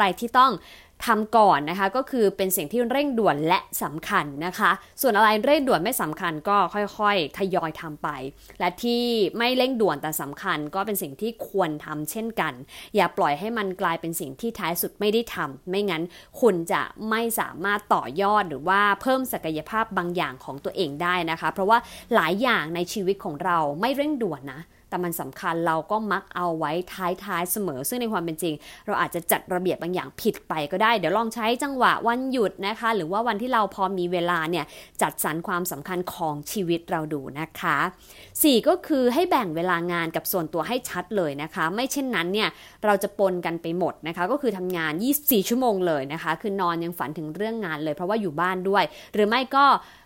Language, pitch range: English, 170-225 Hz